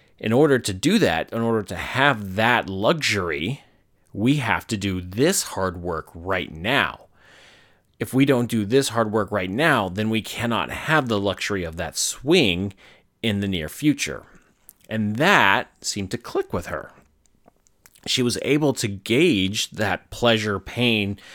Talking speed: 155 wpm